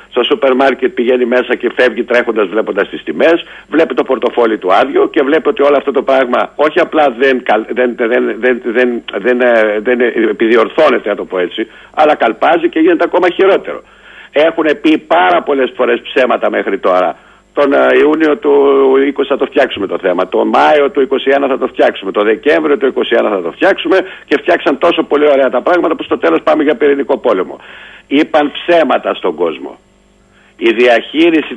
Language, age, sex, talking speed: Greek, 60-79, male, 180 wpm